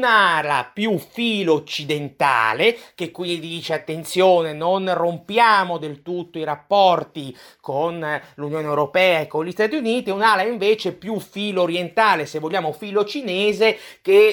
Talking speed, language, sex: 135 wpm, Italian, male